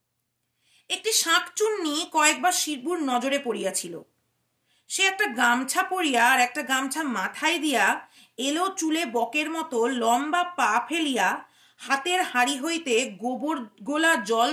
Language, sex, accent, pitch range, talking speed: Bengali, female, native, 240-360 Hz, 115 wpm